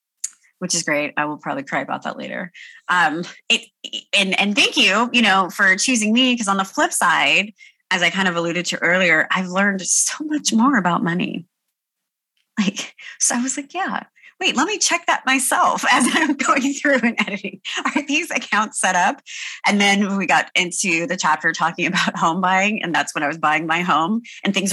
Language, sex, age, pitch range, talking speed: English, female, 30-49, 165-250 Hz, 200 wpm